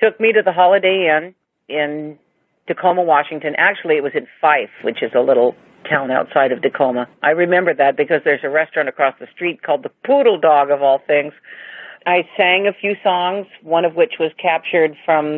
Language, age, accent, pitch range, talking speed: English, 50-69, American, 145-175 Hz, 195 wpm